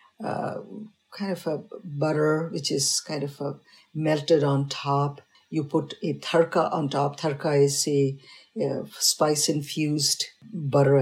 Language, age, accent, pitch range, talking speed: English, 50-69, Indian, 140-180 Hz, 135 wpm